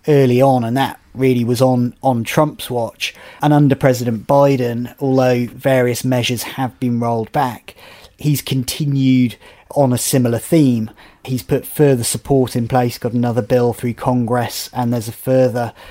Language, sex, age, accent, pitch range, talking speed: English, male, 30-49, British, 120-135 Hz, 160 wpm